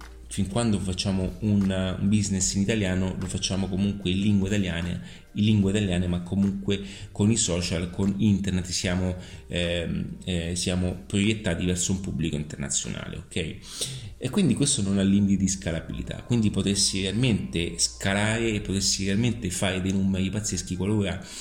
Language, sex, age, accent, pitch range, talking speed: Italian, male, 30-49, native, 90-105 Hz, 150 wpm